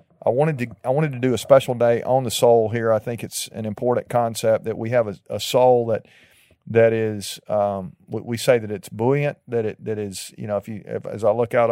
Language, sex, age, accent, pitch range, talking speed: English, male, 40-59, American, 110-125 Hz, 245 wpm